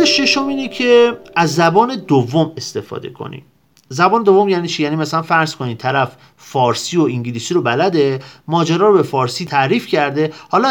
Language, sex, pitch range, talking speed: Persian, male, 135-195 Hz, 160 wpm